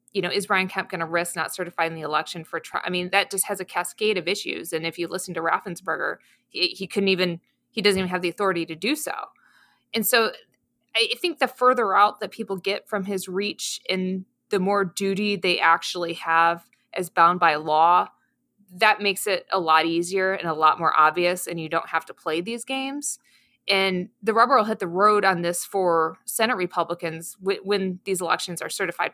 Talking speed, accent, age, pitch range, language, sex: 210 wpm, American, 20-39, 170-205 Hz, English, female